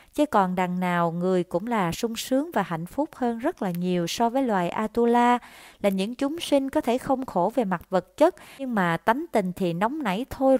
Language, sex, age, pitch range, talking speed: Vietnamese, female, 20-39, 180-250 Hz, 225 wpm